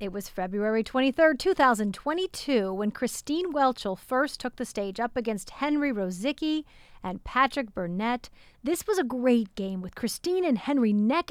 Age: 40-59